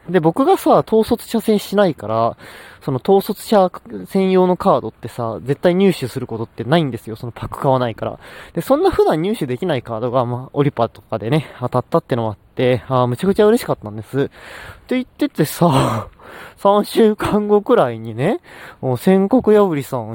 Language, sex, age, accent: Japanese, male, 20-39, native